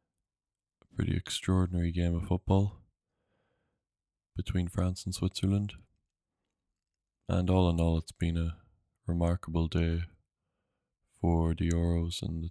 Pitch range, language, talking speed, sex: 85-95 Hz, English, 110 wpm, male